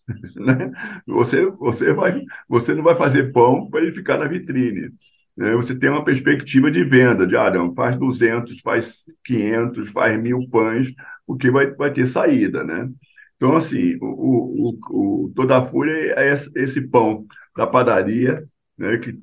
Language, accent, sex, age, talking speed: Portuguese, Brazilian, male, 50-69, 160 wpm